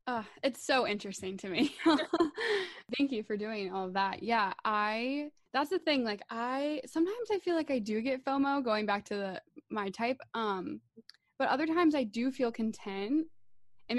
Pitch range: 195-280 Hz